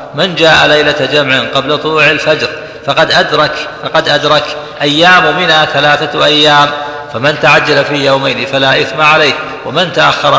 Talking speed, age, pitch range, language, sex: 140 wpm, 50-69, 145-155 Hz, Arabic, male